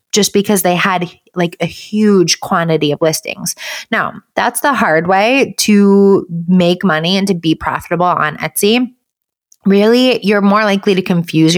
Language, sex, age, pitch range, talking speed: English, female, 20-39, 160-205 Hz, 155 wpm